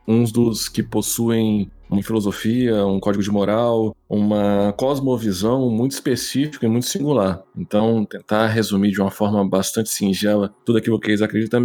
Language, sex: Portuguese, male